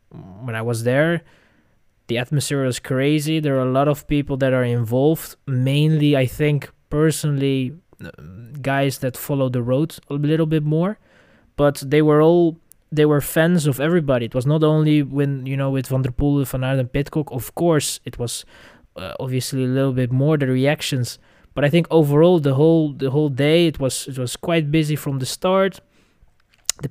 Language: English